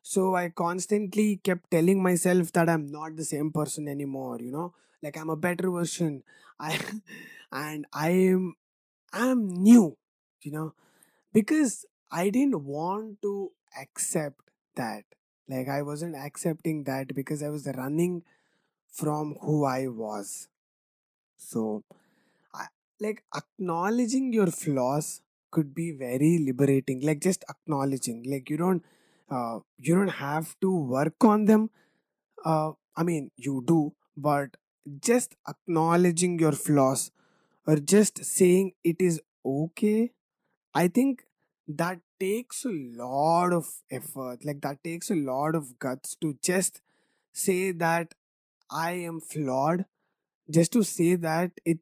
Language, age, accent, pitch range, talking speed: English, 20-39, Indian, 145-185 Hz, 130 wpm